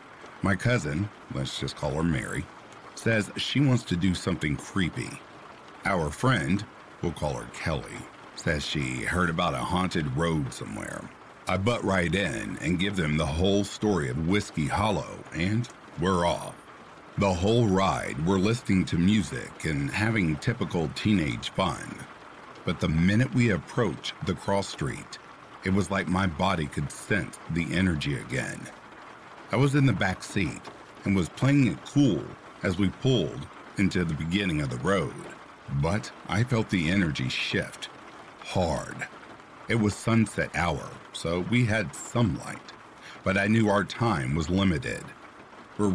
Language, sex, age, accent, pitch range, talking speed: English, male, 50-69, American, 85-110 Hz, 155 wpm